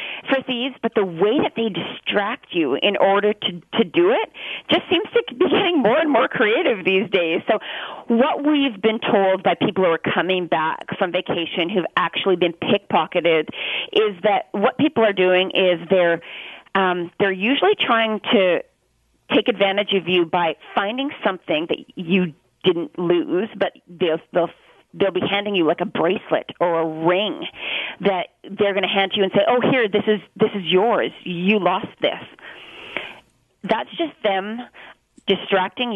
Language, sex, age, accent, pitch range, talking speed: English, female, 40-59, American, 180-230 Hz, 170 wpm